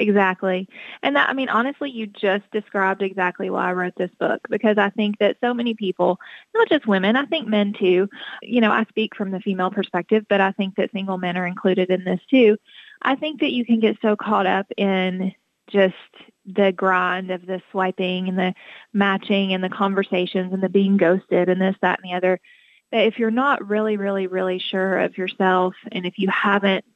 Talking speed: 210 wpm